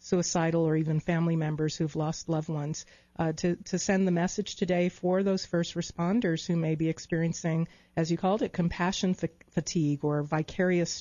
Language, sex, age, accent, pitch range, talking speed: English, female, 40-59, American, 160-180 Hz, 180 wpm